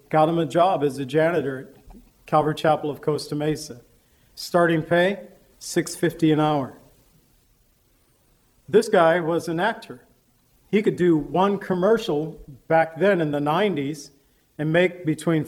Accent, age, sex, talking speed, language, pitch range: American, 40-59, male, 140 wpm, English, 150-180 Hz